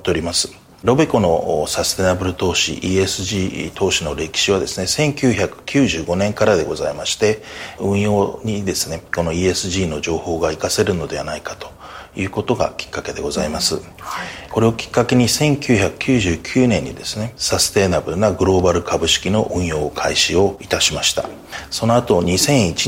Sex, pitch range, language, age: male, 95-120 Hz, Japanese, 40-59